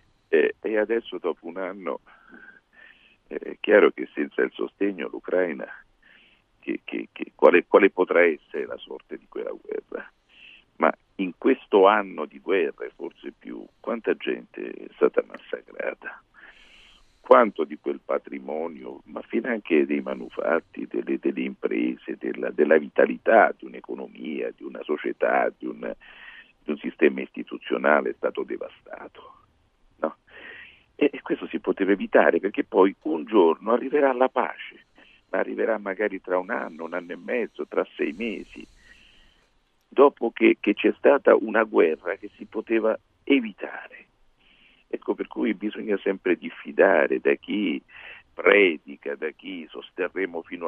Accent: native